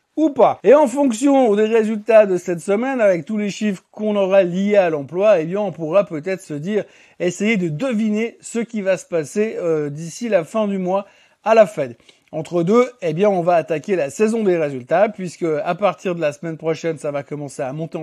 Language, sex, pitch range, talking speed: French, male, 160-215 Hz, 220 wpm